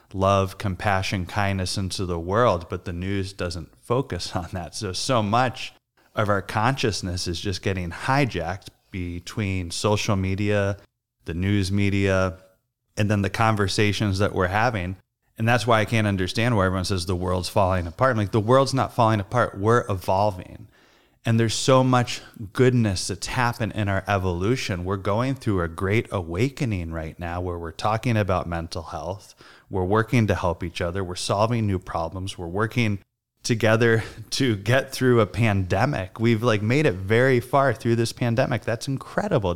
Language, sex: English, male